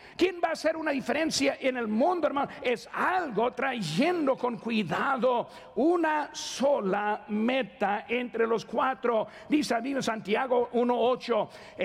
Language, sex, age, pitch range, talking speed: Spanish, male, 50-69, 205-265 Hz, 130 wpm